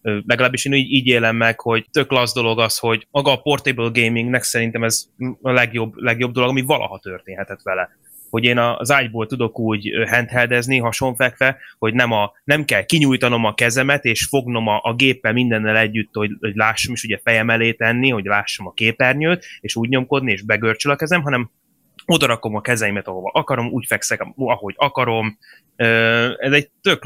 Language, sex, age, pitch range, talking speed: Hungarian, male, 20-39, 115-135 Hz, 180 wpm